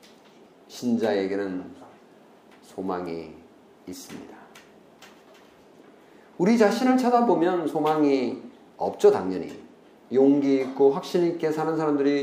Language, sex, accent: Korean, male, native